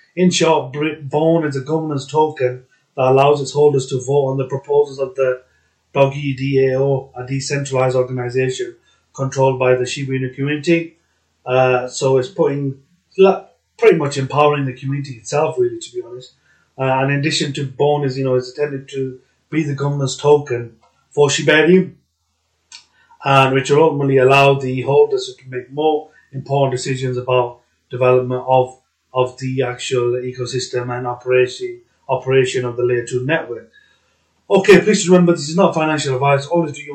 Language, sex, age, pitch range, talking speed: English, male, 30-49, 130-150 Hz, 160 wpm